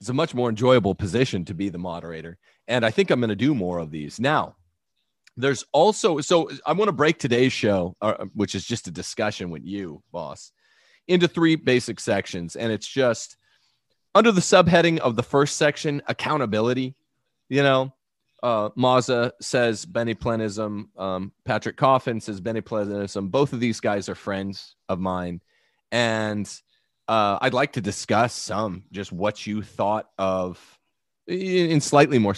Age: 30-49